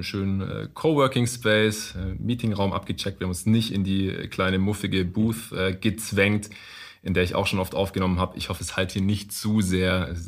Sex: male